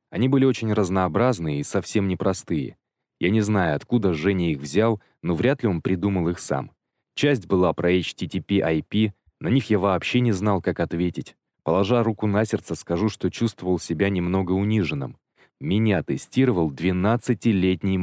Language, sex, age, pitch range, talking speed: Russian, male, 20-39, 90-115 Hz, 155 wpm